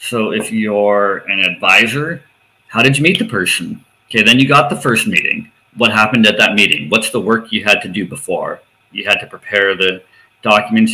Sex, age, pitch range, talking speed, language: male, 40-59, 105-135 Hz, 205 wpm, English